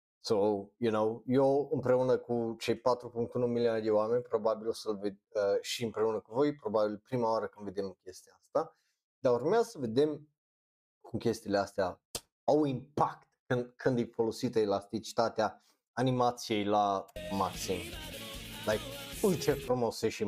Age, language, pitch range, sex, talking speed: 30-49, Romanian, 105-140 Hz, male, 150 wpm